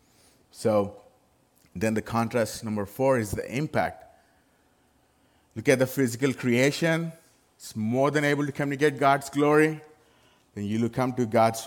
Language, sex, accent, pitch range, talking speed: English, male, Indian, 100-130 Hz, 145 wpm